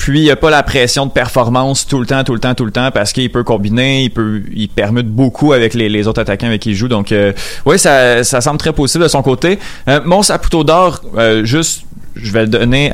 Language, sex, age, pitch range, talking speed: French, male, 30-49, 110-135 Hz, 265 wpm